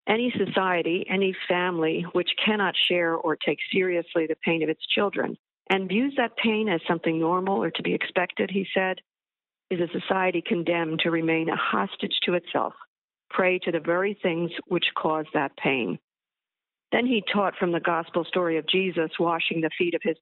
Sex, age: female, 50-69